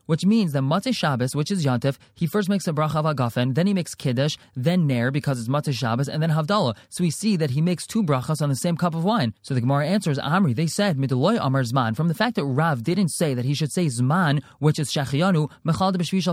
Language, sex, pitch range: English, male, 145-195 Hz